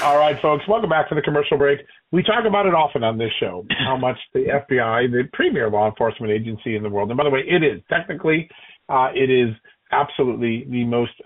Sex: male